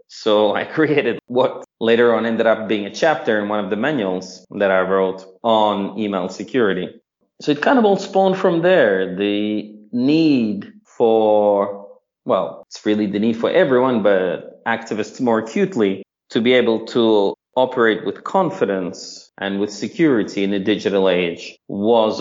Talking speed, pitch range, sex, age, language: 160 wpm, 100-130 Hz, male, 30-49, English